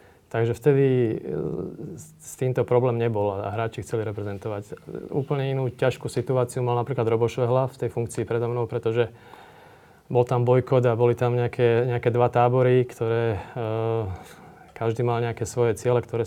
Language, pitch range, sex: Slovak, 115-130 Hz, male